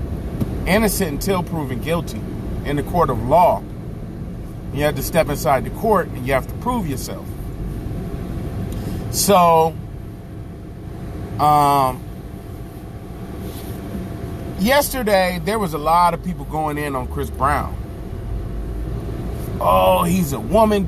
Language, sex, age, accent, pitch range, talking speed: English, male, 30-49, American, 115-170 Hz, 115 wpm